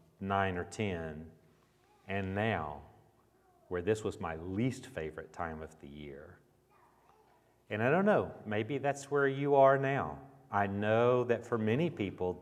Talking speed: 150 wpm